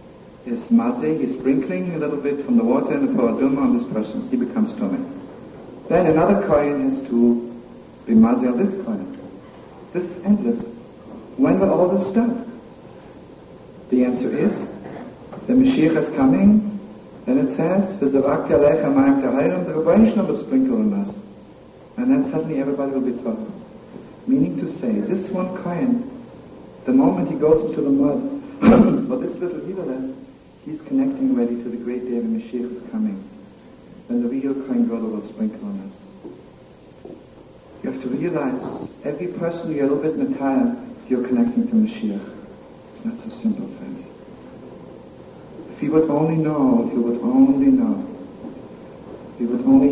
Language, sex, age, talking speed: English, male, 60-79, 165 wpm